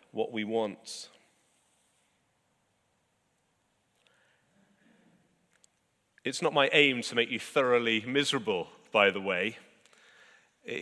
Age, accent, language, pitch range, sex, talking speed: 30-49, British, English, 115-155 Hz, male, 90 wpm